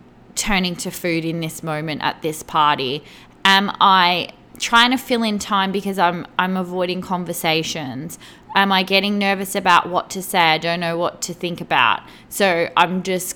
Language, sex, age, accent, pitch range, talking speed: English, female, 20-39, Australian, 175-200 Hz, 175 wpm